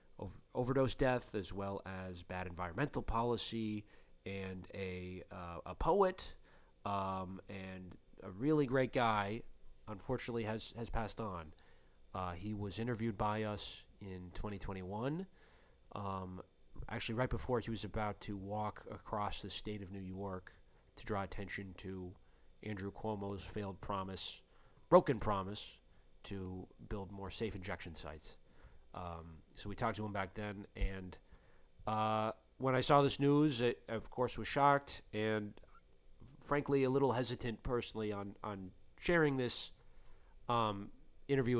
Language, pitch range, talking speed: English, 95-120 Hz, 140 wpm